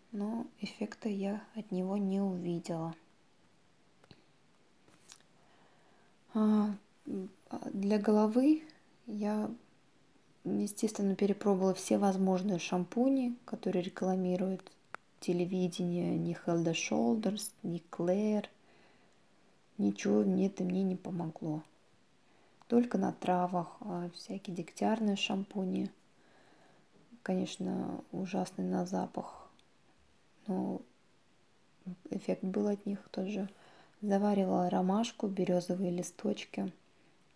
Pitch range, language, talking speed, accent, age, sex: 180-210 Hz, Russian, 75 wpm, native, 20-39, female